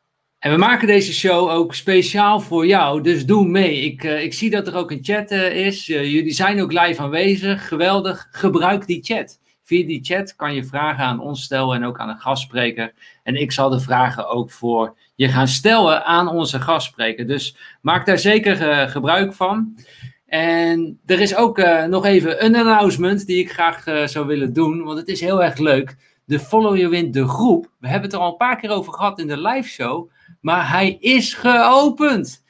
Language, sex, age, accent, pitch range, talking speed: Dutch, male, 50-69, Dutch, 145-195 Hz, 210 wpm